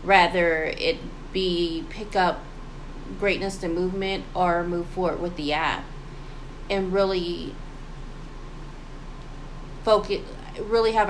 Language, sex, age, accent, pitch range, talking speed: English, female, 20-39, American, 155-185 Hz, 105 wpm